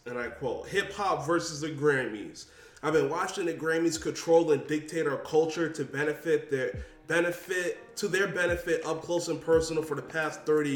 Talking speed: 180 wpm